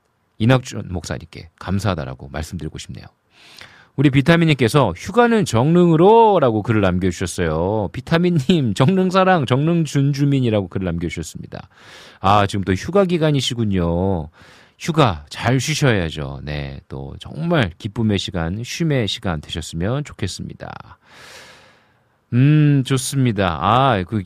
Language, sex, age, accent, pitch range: Korean, male, 40-59, native, 95-155 Hz